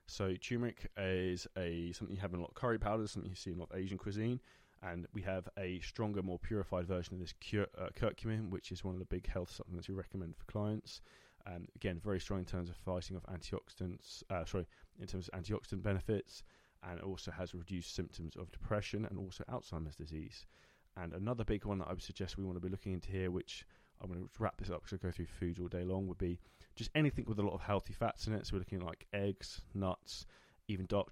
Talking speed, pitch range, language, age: 245 wpm, 90-105 Hz, English, 20-39